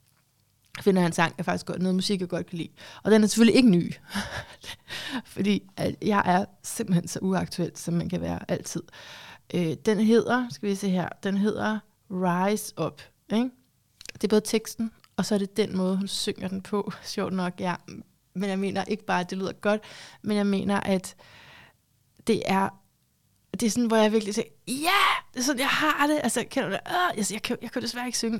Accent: native